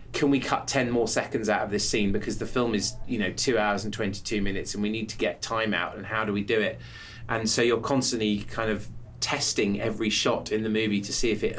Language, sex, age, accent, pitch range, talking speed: English, male, 30-49, British, 105-125 Hz, 260 wpm